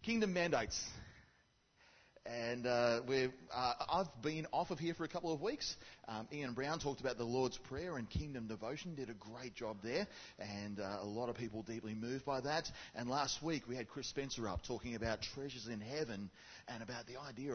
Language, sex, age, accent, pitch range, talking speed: English, male, 30-49, Australian, 105-135 Hz, 200 wpm